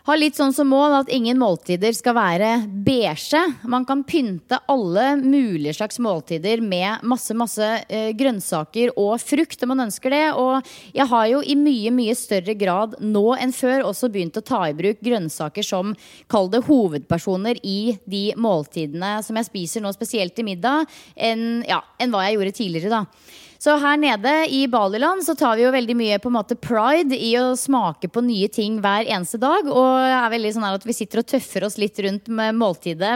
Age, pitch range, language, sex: 20-39, 200-265 Hz, English, female